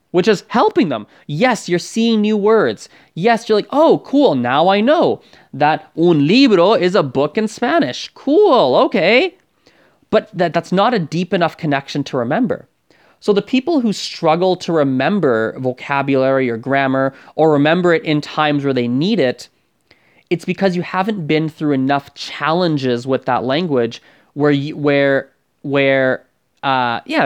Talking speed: 160 wpm